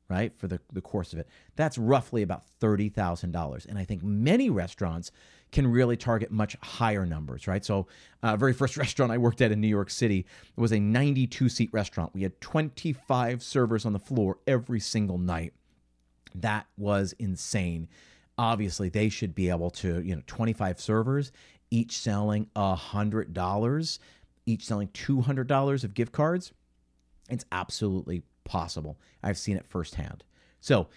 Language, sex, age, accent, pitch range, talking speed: English, male, 40-59, American, 95-135 Hz, 155 wpm